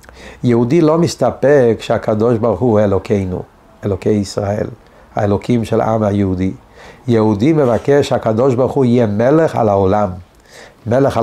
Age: 60-79